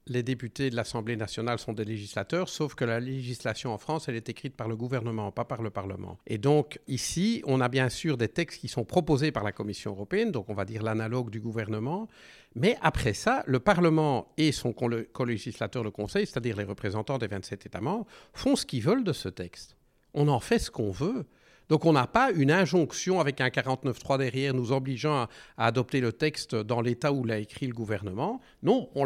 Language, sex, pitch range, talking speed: French, male, 110-155 Hz, 210 wpm